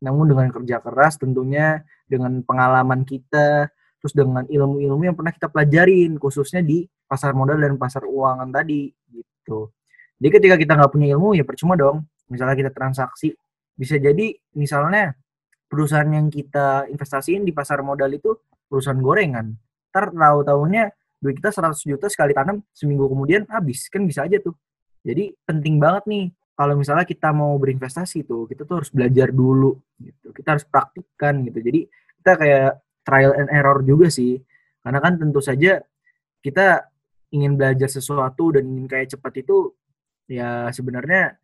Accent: native